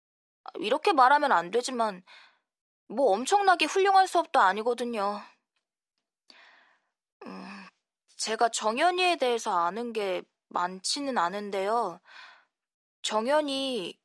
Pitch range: 210-320 Hz